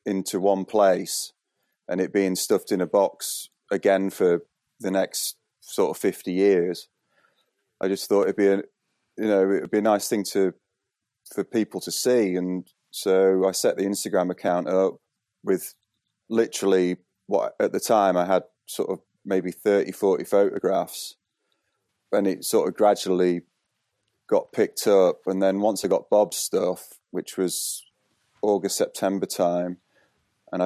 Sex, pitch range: male, 90-105 Hz